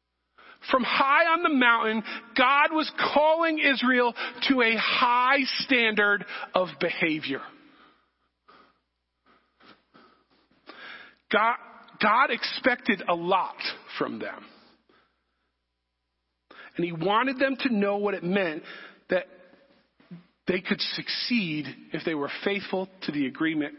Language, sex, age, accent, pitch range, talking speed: English, male, 40-59, American, 170-255 Hz, 105 wpm